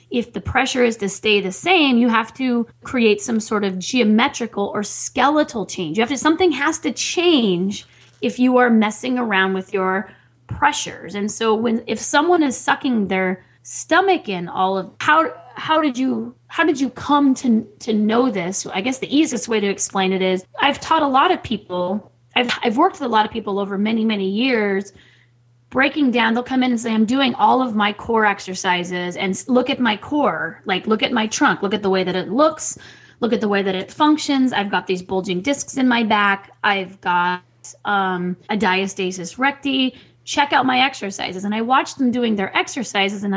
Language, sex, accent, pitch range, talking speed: English, female, American, 195-265 Hz, 205 wpm